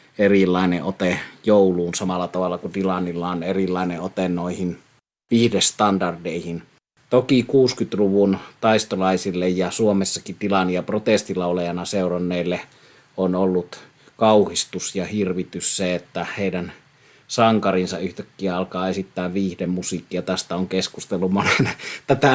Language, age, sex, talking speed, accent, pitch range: Finnish, 30-49, male, 100 wpm, native, 90-105 Hz